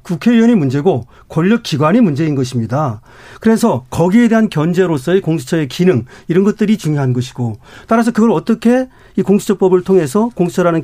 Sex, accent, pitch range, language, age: male, native, 150-210 Hz, Korean, 40-59